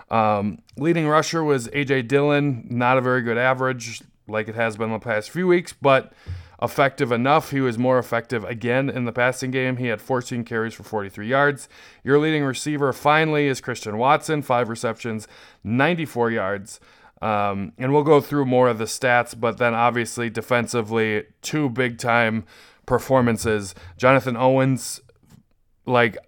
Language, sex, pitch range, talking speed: English, male, 110-135 Hz, 160 wpm